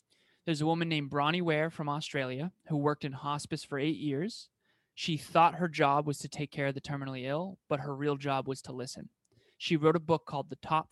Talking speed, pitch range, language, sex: 225 wpm, 140-160 Hz, English, male